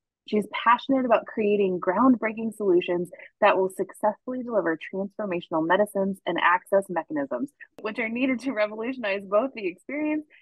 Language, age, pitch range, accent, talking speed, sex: English, 20-39, 180-250 Hz, American, 130 wpm, female